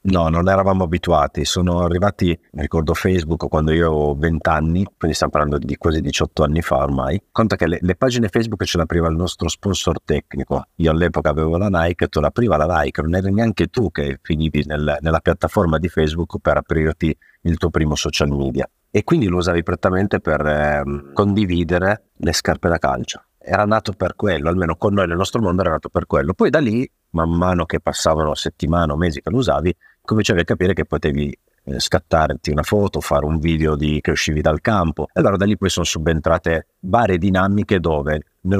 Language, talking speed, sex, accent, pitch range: Italian, 200 wpm, male, native, 80-95 Hz